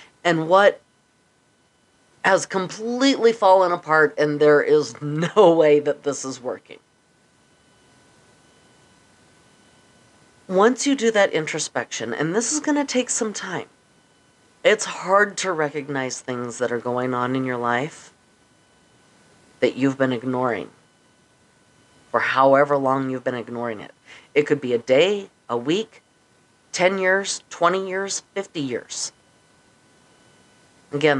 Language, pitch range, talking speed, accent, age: English, 130-180 Hz, 125 wpm, American, 40-59